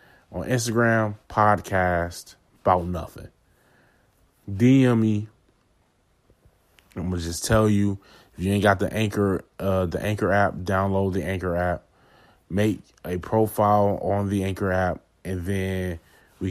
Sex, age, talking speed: male, 20-39, 130 wpm